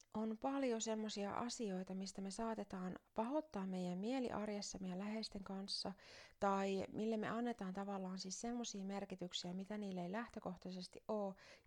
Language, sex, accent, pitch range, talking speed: Finnish, female, native, 180-220 Hz, 135 wpm